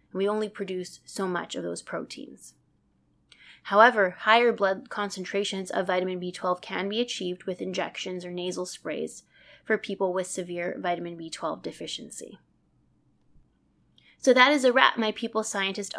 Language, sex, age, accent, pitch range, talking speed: English, female, 20-39, American, 185-220 Hz, 145 wpm